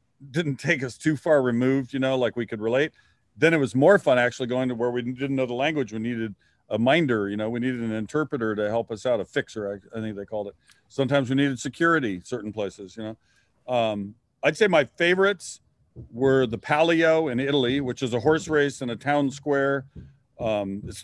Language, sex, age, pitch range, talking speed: English, male, 40-59, 115-145 Hz, 220 wpm